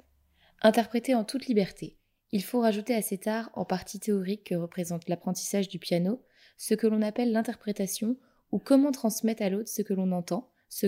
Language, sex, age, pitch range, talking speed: French, female, 20-39, 180-220 Hz, 180 wpm